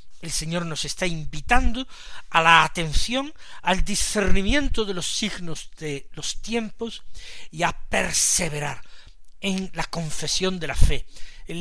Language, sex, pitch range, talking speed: Spanish, male, 145-200 Hz, 135 wpm